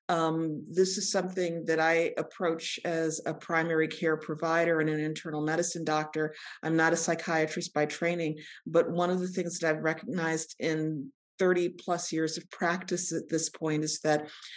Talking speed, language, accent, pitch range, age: 175 wpm, English, American, 155-170 Hz, 40-59